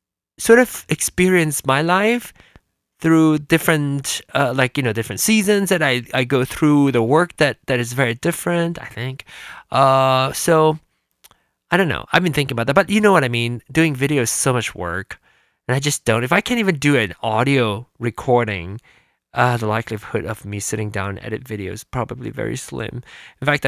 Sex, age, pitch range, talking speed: male, 20-39, 115-155 Hz, 195 wpm